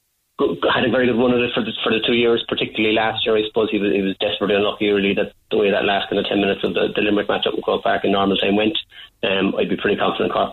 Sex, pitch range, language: male, 100-105 Hz, English